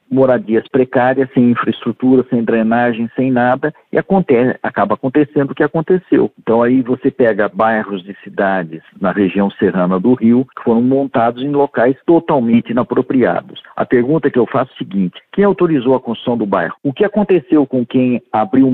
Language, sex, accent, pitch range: Portuguese, male, Brazilian, 120-170 Hz